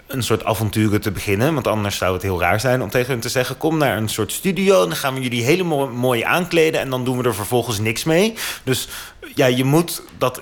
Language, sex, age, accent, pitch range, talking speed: Dutch, male, 30-49, Dutch, 105-135 Hz, 250 wpm